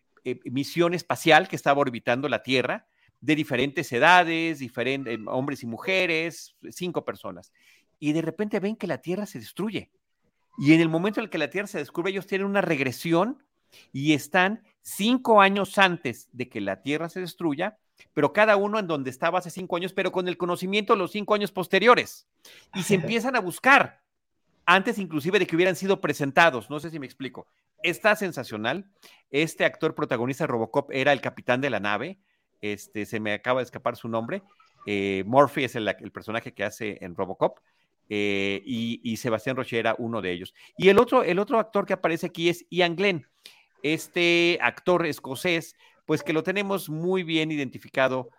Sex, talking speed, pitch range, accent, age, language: male, 180 wpm, 125-185 Hz, Mexican, 40-59, Spanish